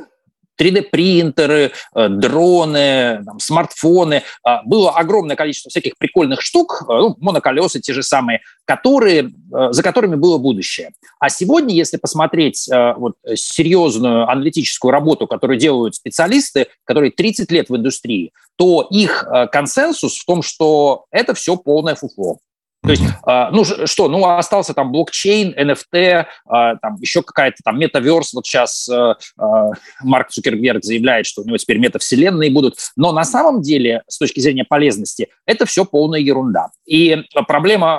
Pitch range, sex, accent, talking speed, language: 130-180 Hz, male, native, 135 wpm, Russian